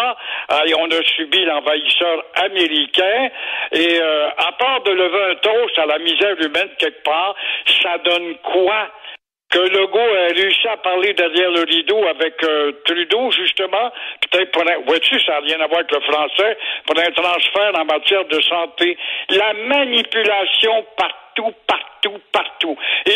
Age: 60-79